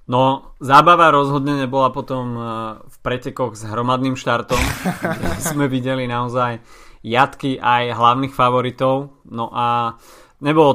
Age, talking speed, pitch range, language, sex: 20-39, 110 wpm, 110-130 Hz, Slovak, male